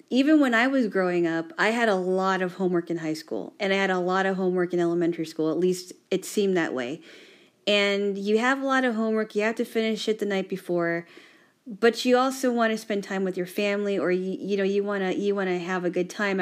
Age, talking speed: 40-59, 255 wpm